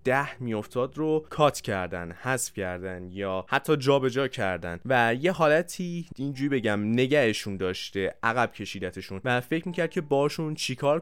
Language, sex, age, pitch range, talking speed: Persian, male, 20-39, 105-140 Hz, 150 wpm